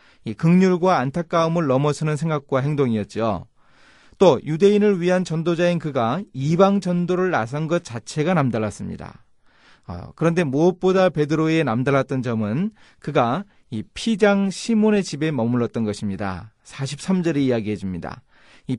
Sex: male